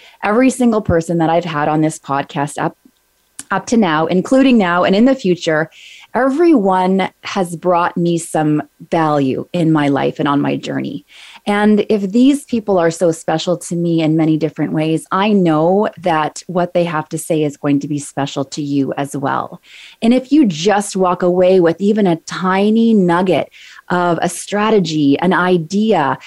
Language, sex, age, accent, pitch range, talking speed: English, female, 20-39, American, 160-215 Hz, 180 wpm